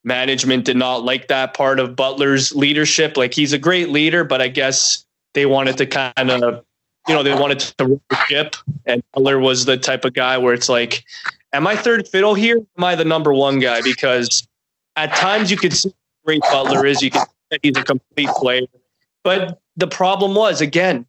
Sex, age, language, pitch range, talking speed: male, 20-39, English, 135-195 Hz, 200 wpm